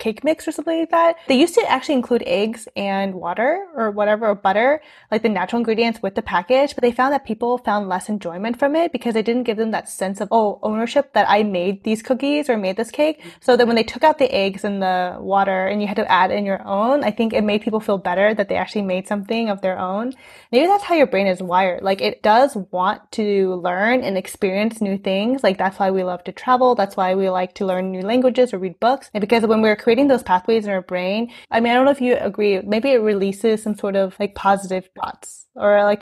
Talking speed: 250 wpm